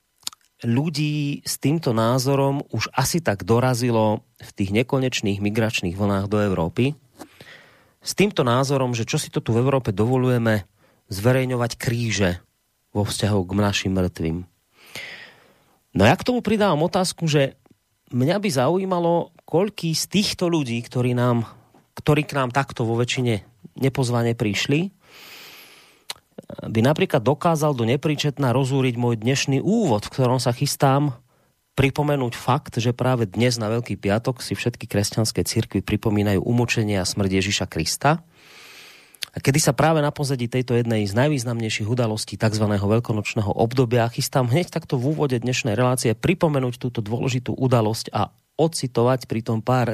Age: 30-49